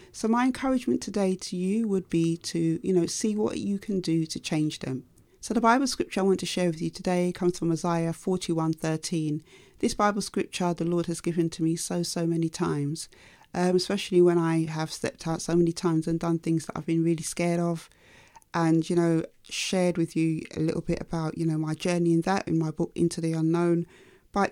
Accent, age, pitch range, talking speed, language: British, 40-59, 165-190 Hz, 225 wpm, English